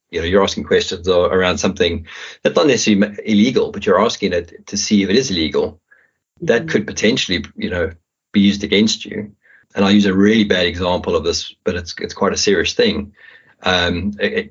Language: English